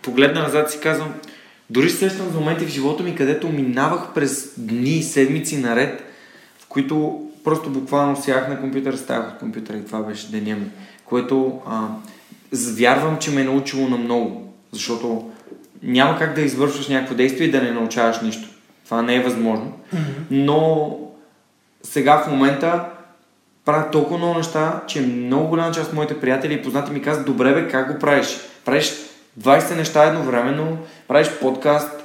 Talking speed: 160 wpm